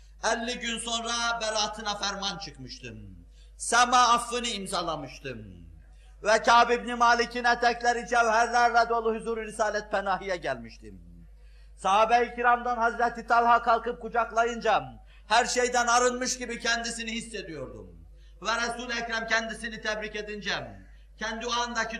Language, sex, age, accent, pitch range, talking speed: Turkish, male, 50-69, native, 185-235 Hz, 110 wpm